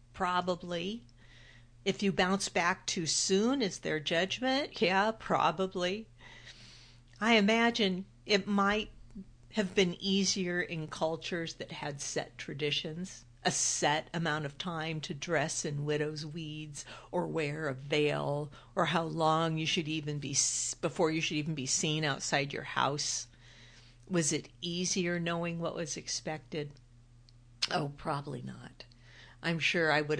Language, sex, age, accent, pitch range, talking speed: English, female, 50-69, American, 145-185 Hz, 135 wpm